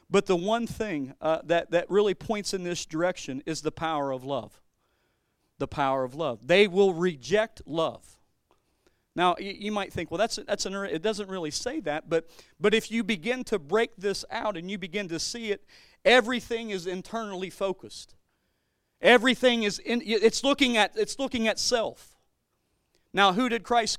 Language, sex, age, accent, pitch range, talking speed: English, male, 40-59, American, 175-220 Hz, 185 wpm